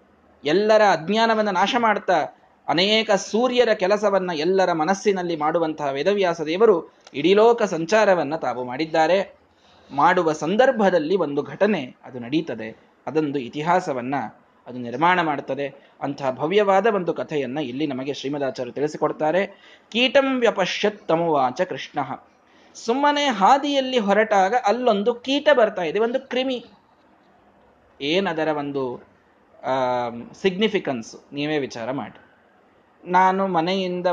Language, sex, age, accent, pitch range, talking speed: Kannada, male, 20-39, native, 145-210 Hz, 95 wpm